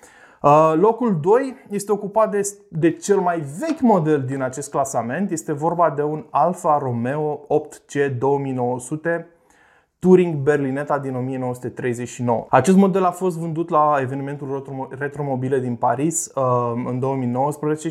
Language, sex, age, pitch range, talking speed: Romanian, male, 20-39, 135-170 Hz, 130 wpm